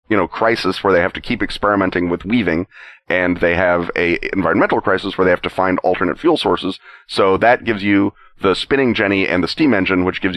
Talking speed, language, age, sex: 220 wpm, English, 30-49, male